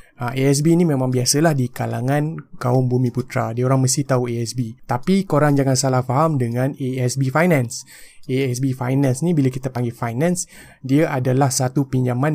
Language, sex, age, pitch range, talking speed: Malay, male, 20-39, 125-155 Hz, 165 wpm